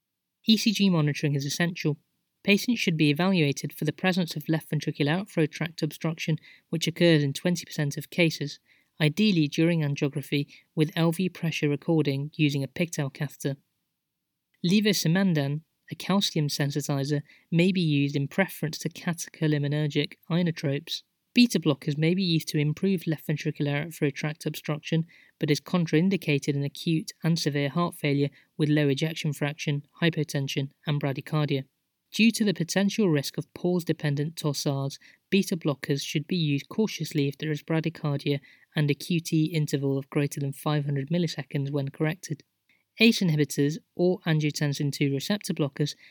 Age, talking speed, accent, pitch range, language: 20-39, 145 wpm, British, 145-170 Hz, English